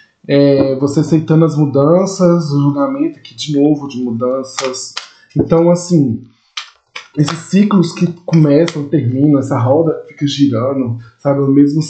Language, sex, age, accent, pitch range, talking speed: Portuguese, male, 20-39, Brazilian, 130-170 Hz, 130 wpm